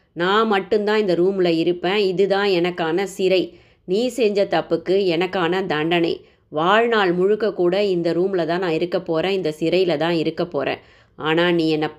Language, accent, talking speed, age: Tamil, native, 155 wpm, 20-39